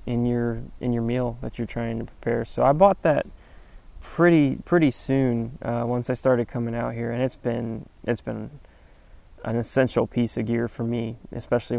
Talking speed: 190 wpm